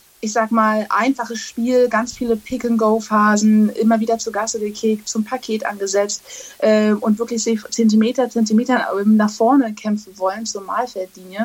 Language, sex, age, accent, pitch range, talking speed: German, female, 20-39, German, 210-235 Hz, 145 wpm